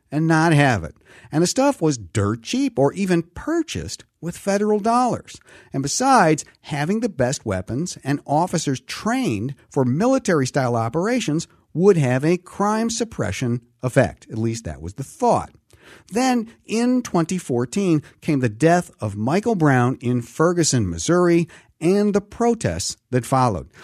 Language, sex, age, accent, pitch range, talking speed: English, male, 50-69, American, 125-185 Hz, 145 wpm